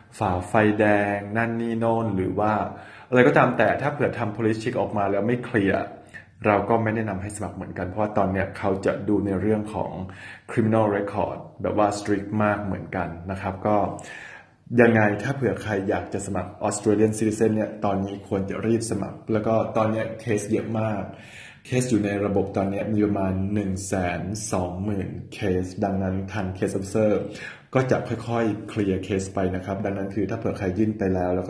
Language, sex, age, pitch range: Thai, male, 20-39, 95-110 Hz